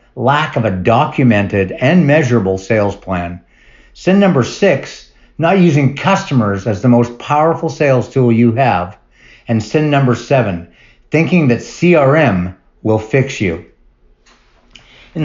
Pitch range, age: 115-155 Hz, 50-69